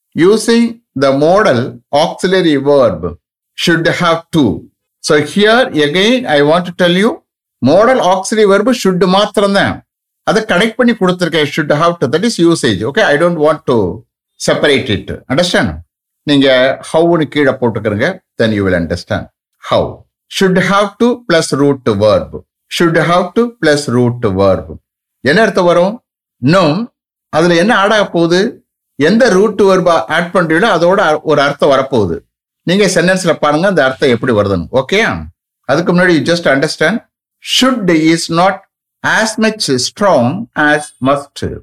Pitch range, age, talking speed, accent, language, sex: 130-190 Hz, 60-79, 120 wpm, Indian, English, male